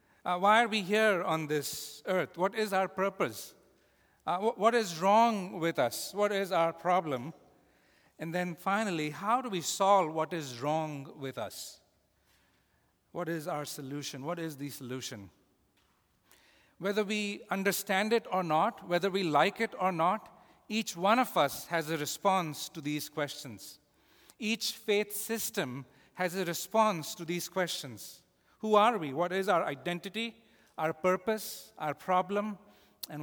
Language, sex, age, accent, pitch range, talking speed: English, male, 50-69, Indian, 155-205 Hz, 155 wpm